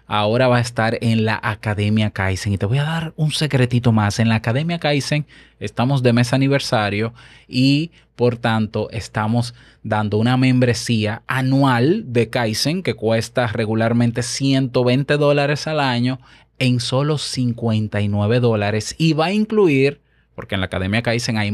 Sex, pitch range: male, 110-140 Hz